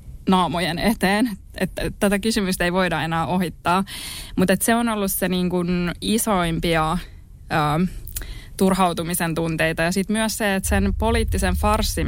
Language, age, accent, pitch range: Finnish, 20-39, native, 160-195 Hz